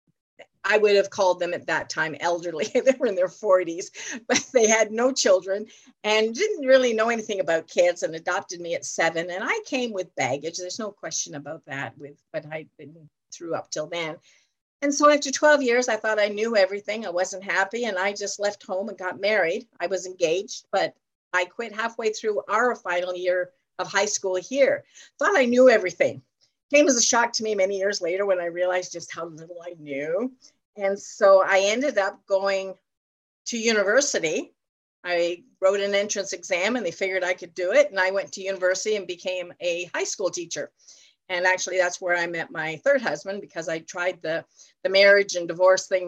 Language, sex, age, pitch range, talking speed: English, female, 50-69, 175-235 Hz, 200 wpm